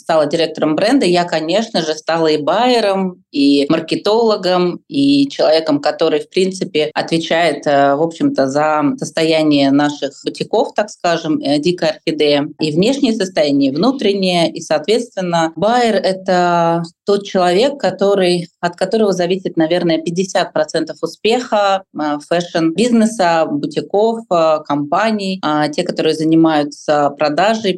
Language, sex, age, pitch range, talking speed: Russian, female, 30-49, 160-210 Hz, 110 wpm